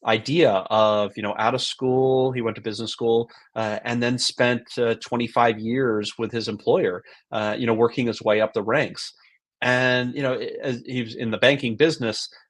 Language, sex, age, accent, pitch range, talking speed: English, male, 30-49, American, 110-135 Hz, 195 wpm